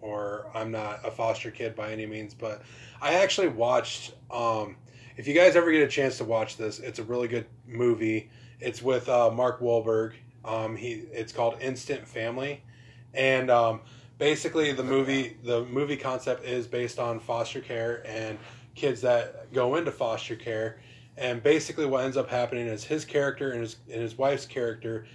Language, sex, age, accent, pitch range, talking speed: English, male, 20-39, American, 115-130 Hz, 180 wpm